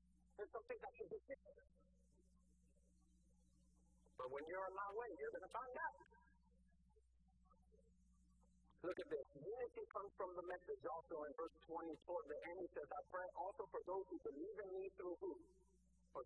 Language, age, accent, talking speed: English, 50-69, American, 155 wpm